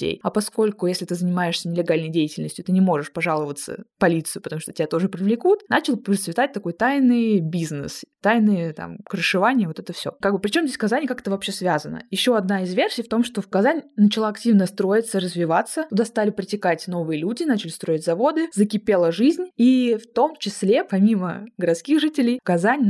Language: Russian